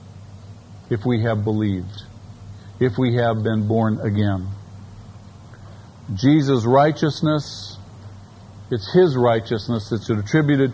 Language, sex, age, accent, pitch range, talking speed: English, male, 50-69, American, 105-140 Hz, 95 wpm